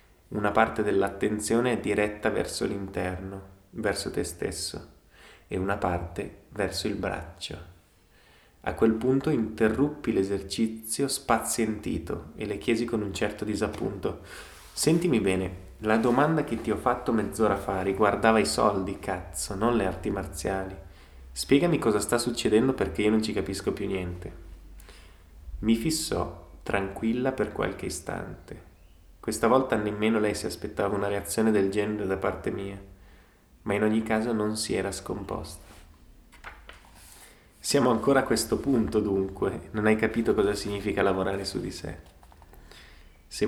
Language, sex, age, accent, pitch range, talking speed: English, male, 20-39, Italian, 95-110 Hz, 140 wpm